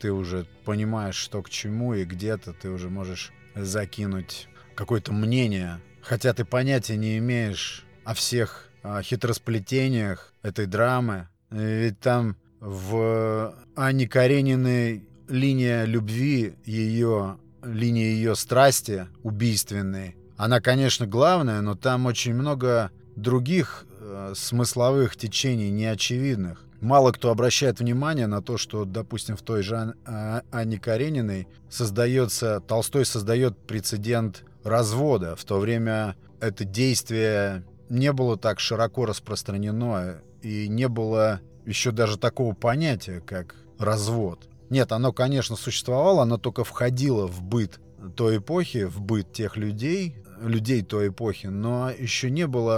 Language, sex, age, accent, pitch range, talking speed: Russian, male, 30-49, native, 105-125 Hz, 120 wpm